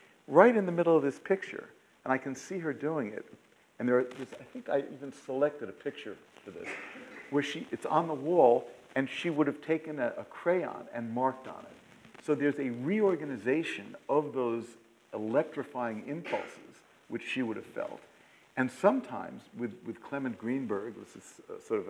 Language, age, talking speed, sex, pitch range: English, 50-69, 185 wpm, male, 120-155 Hz